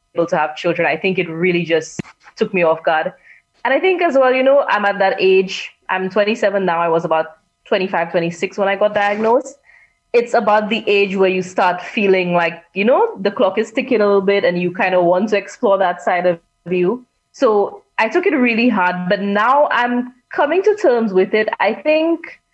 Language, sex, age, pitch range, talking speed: English, female, 20-39, 170-220 Hz, 215 wpm